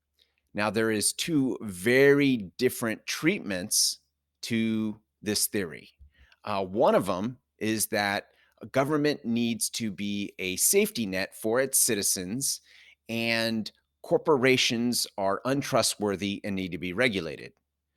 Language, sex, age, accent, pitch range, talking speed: English, male, 30-49, American, 85-130 Hz, 120 wpm